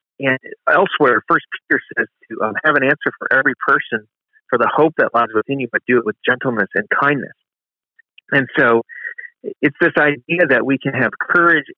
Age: 40-59